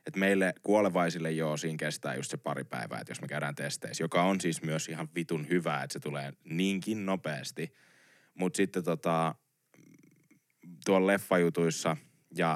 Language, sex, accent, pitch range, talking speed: Finnish, male, native, 75-95 Hz, 150 wpm